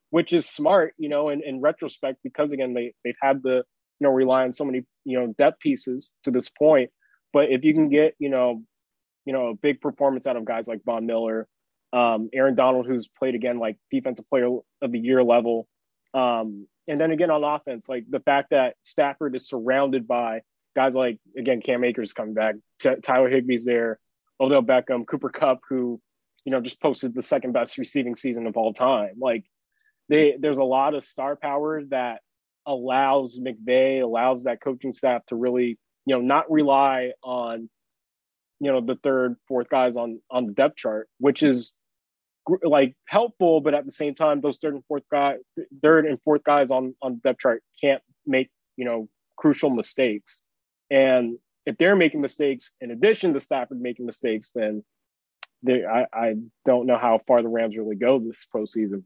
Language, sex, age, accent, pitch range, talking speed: English, male, 20-39, American, 120-145 Hz, 190 wpm